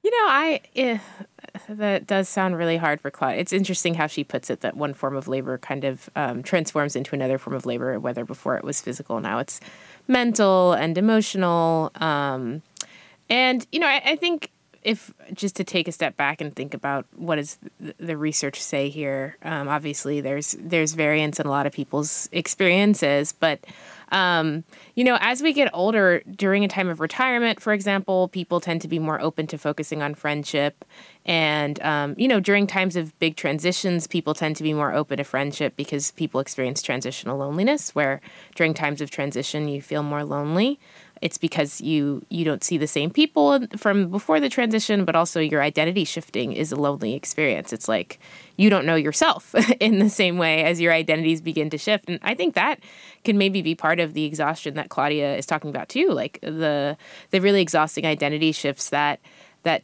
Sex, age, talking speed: female, 20-39, 195 wpm